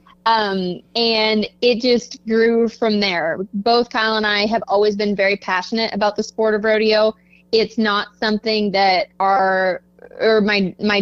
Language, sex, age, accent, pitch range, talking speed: English, female, 20-39, American, 195-225 Hz, 160 wpm